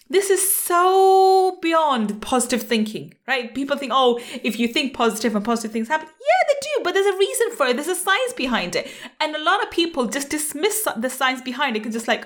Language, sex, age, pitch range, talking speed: English, female, 30-49, 230-320 Hz, 220 wpm